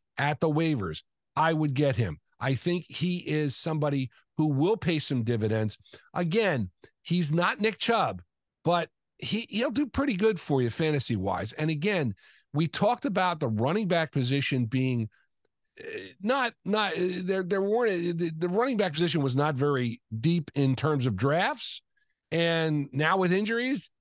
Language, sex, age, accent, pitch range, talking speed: English, male, 50-69, American, 130-180 Hz, 155 wpm